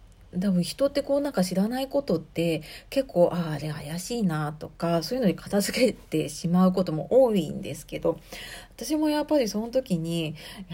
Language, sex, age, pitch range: Japanese, female, 40-59, 160-215 Hz